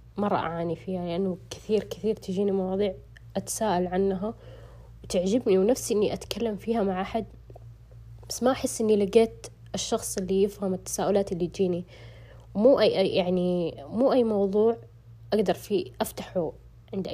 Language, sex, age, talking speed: Arabic, female, 20-39, 135 wpm